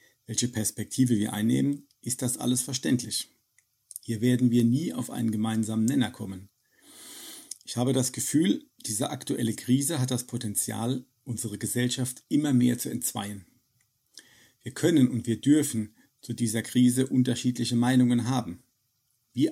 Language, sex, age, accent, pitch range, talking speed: German, male, 50-69, German, 110-125 Hz, 140 wpm